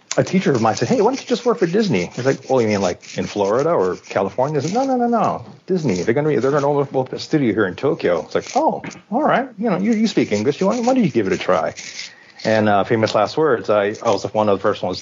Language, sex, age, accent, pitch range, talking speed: English, male, 30-49, American, 95-130 Hz, 310 wpm